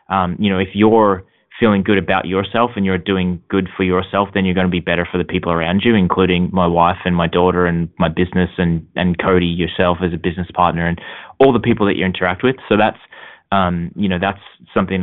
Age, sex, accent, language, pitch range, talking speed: 20-39, male, Australian, English, 90-105 Hz, 230 wpm